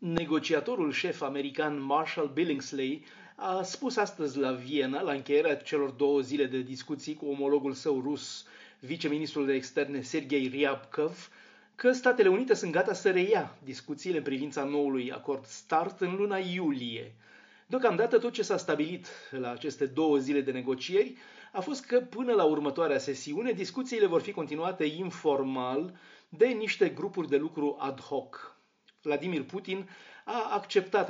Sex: male